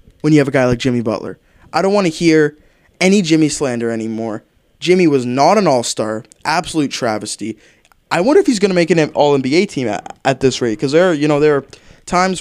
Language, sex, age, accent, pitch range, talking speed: English, male, 20-39, American, 120-155 Hz, 205 wpm